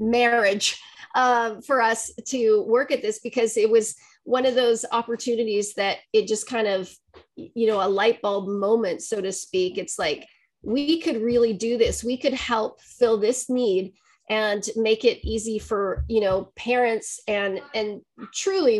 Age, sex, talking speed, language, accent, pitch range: 40-59, female, 170 wpm, English, American, 205-245 Hz